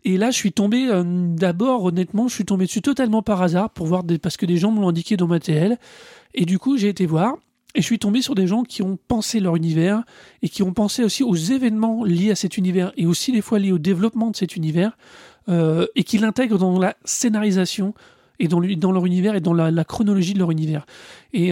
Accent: French